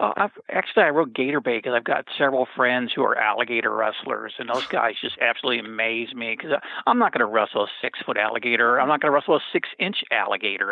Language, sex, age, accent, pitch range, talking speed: English, male, 50-69, American, 125-195 Hz, 225 wpm